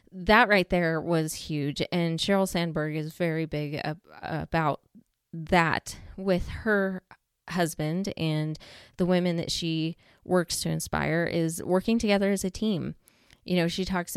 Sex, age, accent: female, 20-39, American